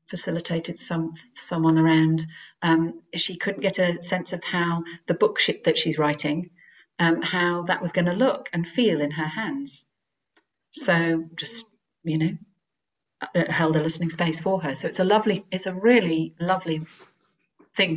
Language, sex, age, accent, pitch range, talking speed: English, female, 40-59, British, 160-190 Hz, 160 wpm